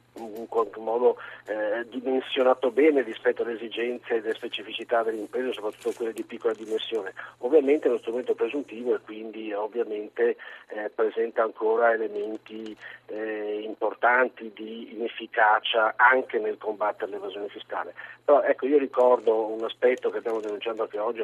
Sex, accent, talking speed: male, native, 140 wpm